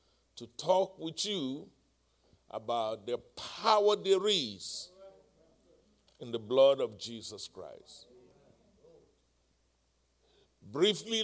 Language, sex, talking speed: English, male, 85 wpm